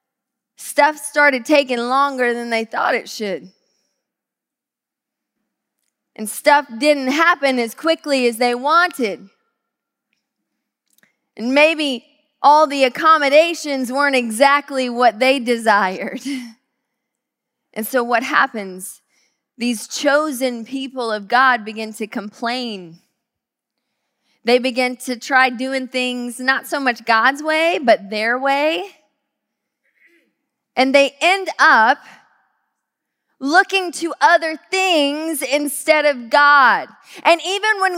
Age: 20-39